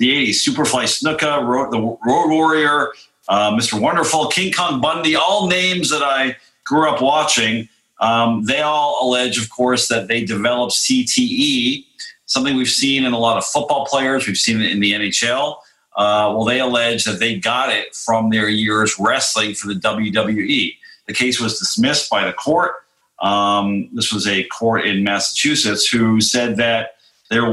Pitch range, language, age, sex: 105-135 Hz, English, 40-59, male